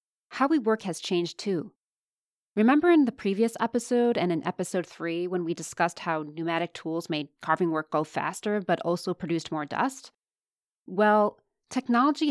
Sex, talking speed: female, 160 wpm